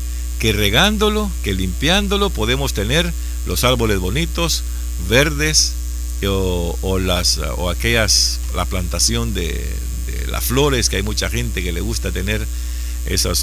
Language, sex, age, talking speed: Spanish, male, 50-69, 125 wpm